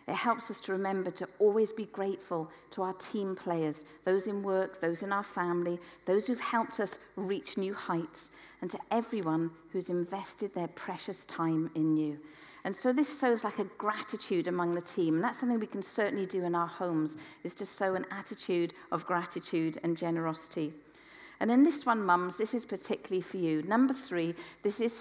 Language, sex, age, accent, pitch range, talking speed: English, female, 50-69, British, 165-230 Hz, 190 wpm